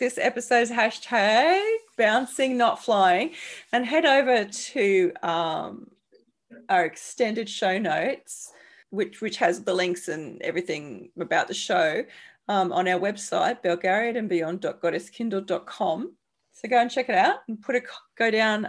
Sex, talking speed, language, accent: female, 140 wpm, English, Australian